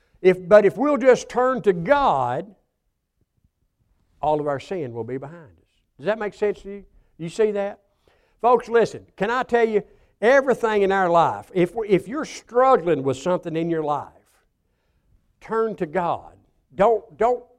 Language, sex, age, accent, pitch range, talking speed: English, male, 60-79, American, 175-240 Hz, 165 wpm